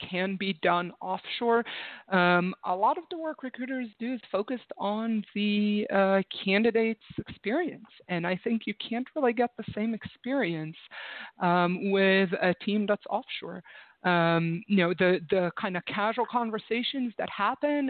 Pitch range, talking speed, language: 180-235 Hz, 155 wpm, English